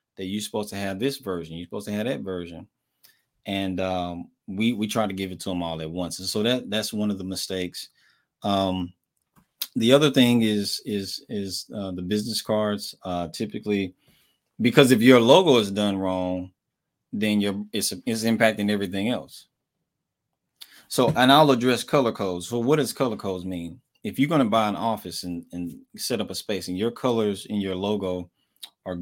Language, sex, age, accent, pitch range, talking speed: English, male, 20-39, American, 95-120 Hz, 190 wpm